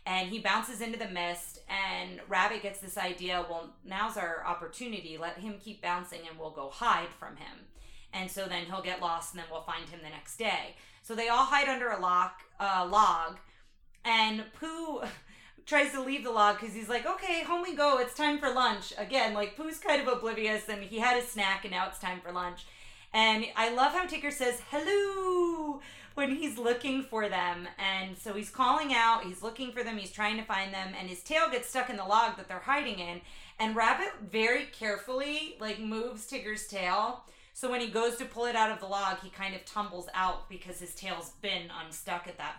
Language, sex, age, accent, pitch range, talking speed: English, female, 30-49, American, 180-245 Hz, 215 wpm